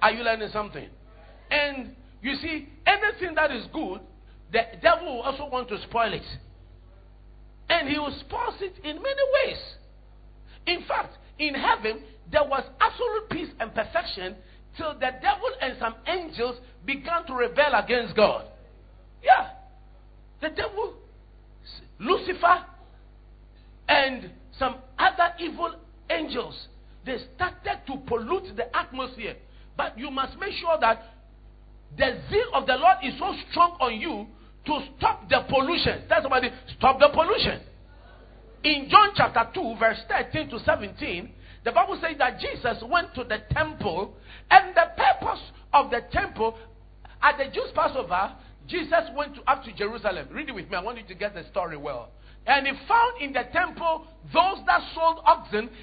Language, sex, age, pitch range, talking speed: English, male, 50-69, 235-345 Hz, 155 wpm